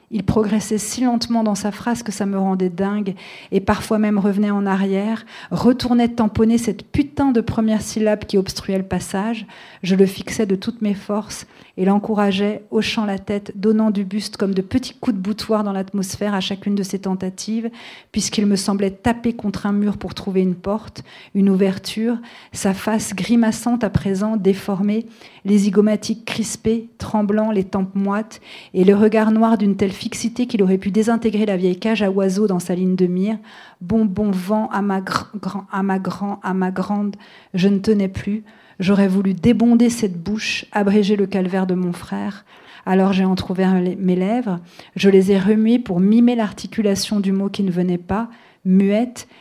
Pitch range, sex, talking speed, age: 190-220 Hz, female, 185 wpm, 40-59